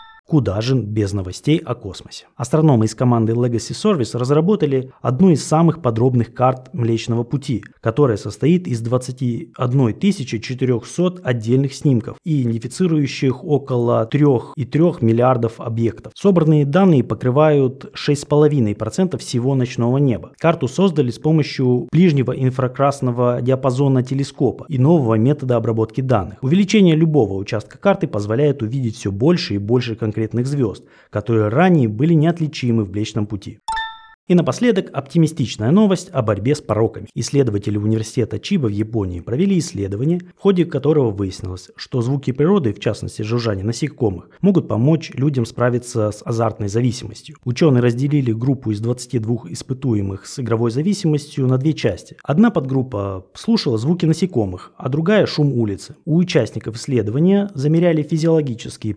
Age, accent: 20-39, native